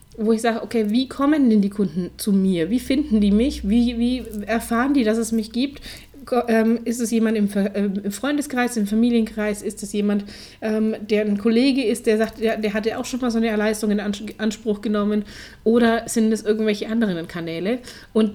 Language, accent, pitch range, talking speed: German, German, 205-240 Hz, 190 wpm